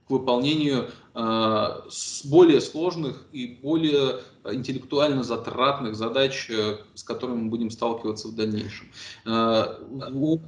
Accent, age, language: native, 20-39, Russian